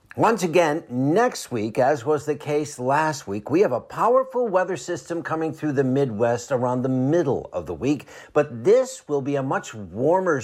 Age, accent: 60-79, American